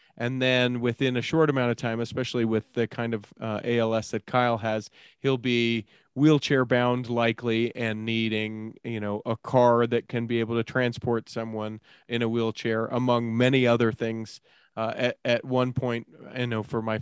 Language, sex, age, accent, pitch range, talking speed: English, male, 30-49, American, 110-130 Hz, 185 wpm